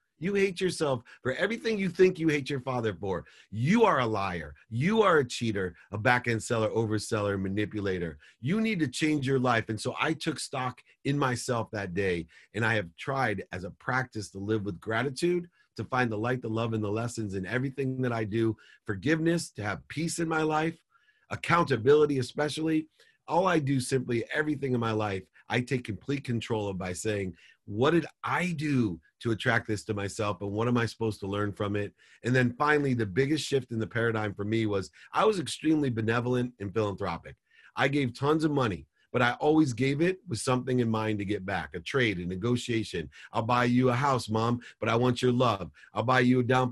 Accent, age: American, 40-59